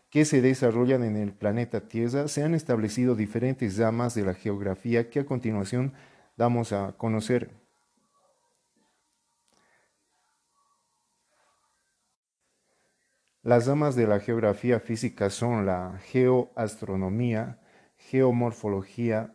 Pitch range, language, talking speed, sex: 110-130 Hz, Spanish, 95 wpm, male